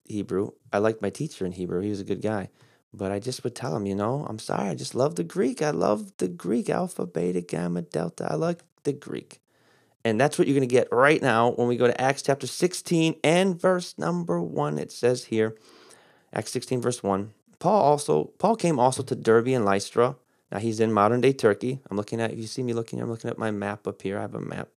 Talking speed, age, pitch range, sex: 240 wpm, 30-49, 105-140 Hz, male